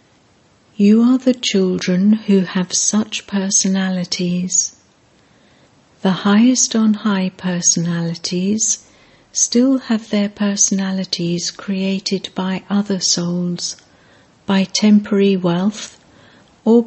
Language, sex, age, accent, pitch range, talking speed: English, female, 60-79, British, 180-210 Hz, 90 wpm